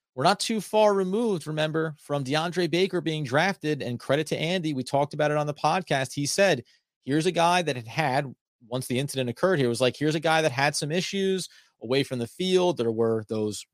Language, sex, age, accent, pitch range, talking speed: English, male, 30-49, American, 130-165 Hz, 220 wpm